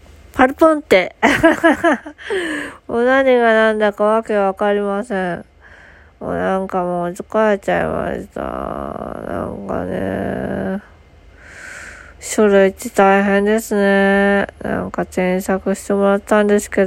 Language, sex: Japanese, female